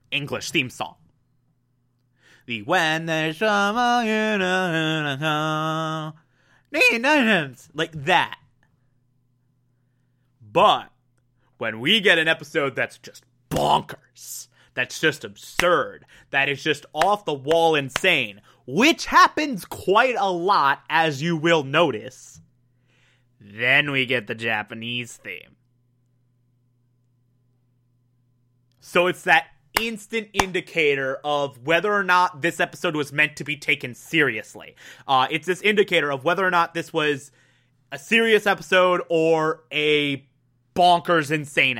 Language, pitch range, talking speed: English, 125-180 Hz, 115 wpm